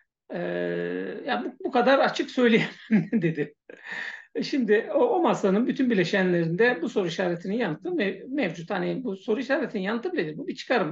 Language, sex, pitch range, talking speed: Turkish, male, 180-235 Hz, 160 wpm